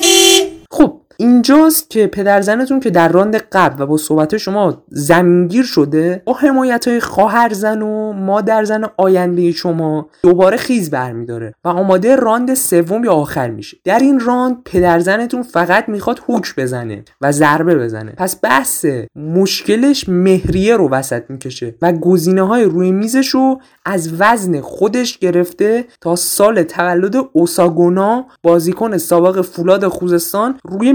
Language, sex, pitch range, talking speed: Persian, male, 170-235 Hz, 130 wpm